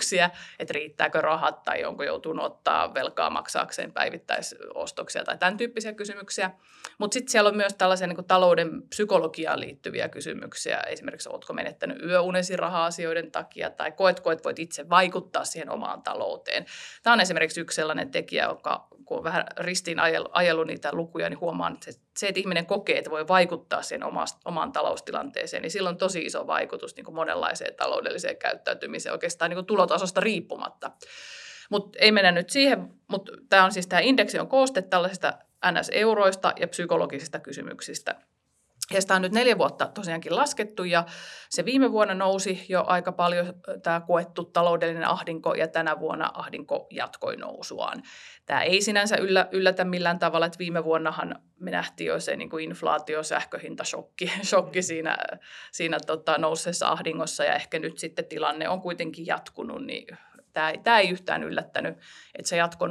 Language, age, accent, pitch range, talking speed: Finnish, 30-49, native, 170-210 Hz, 155 wpm